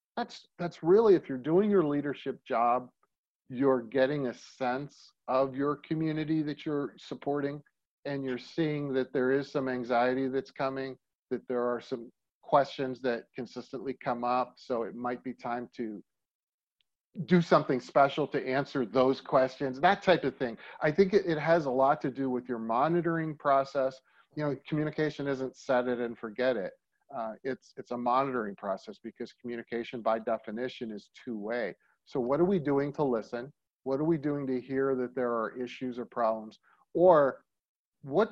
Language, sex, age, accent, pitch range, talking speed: English, male, 40-59, American, 120-145 Hz, 170 wpm